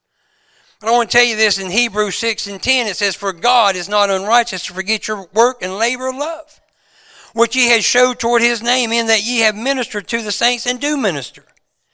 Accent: American